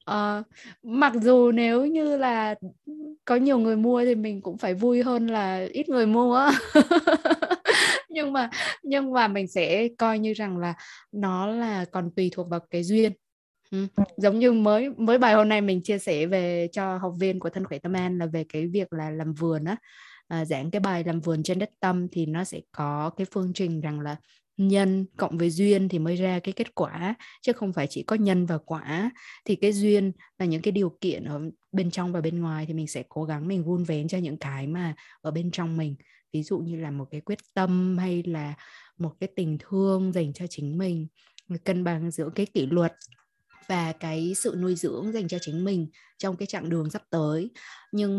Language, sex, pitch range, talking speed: Vietnamese, female, 165-215 Hz, 210 wpm